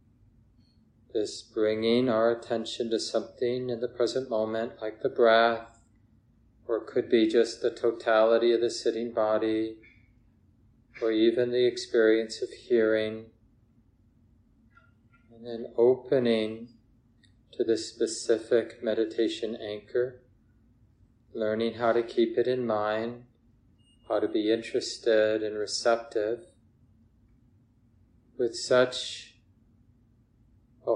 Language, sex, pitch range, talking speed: English, male, 110-115 Hz, 105 wpm